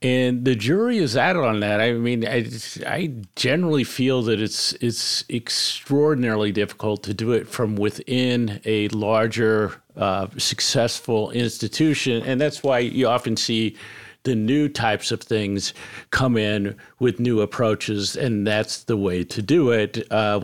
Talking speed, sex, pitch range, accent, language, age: 155 wpm, male, 110-130 Hz, American, English, 50-69